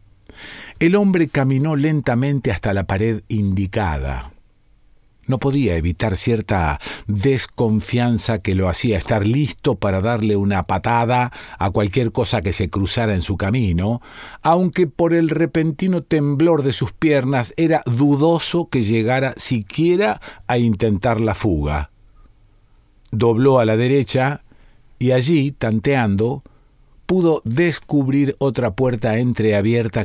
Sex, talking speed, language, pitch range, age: male, 120 wpm, Spanish, 100-140 Hz, 50-69